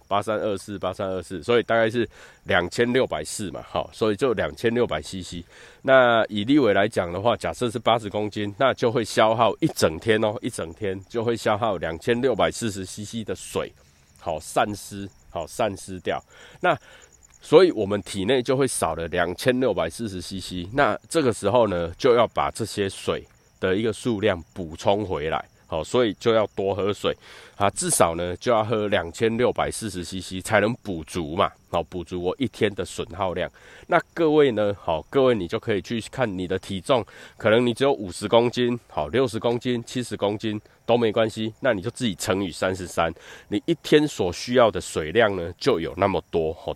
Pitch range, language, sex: 95-120 Hz, Chinese, male